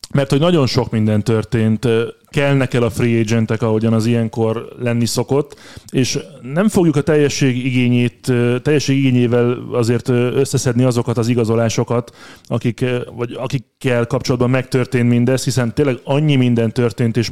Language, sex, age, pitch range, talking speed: Hungarian, male, 30-49, 115-135 Hz, 135 wpm